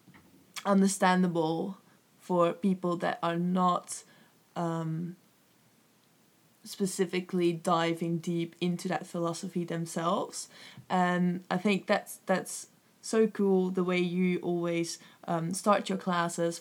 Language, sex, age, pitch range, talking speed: English, female, 20-39, 175-195 Hz, 105 wpm